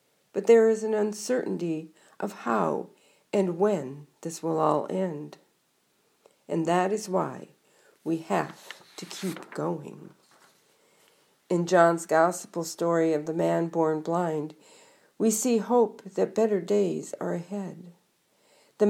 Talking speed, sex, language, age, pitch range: 125 wpm, female, English, 50-69, 170-225 Hz